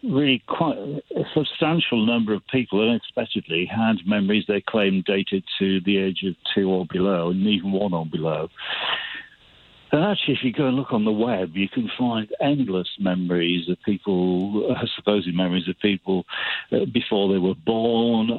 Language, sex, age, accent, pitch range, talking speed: English, male, 60-79, British, 95-120 Hz, 165 wpm